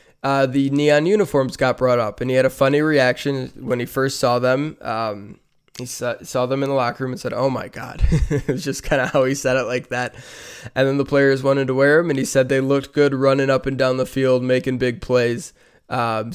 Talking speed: 240 wpm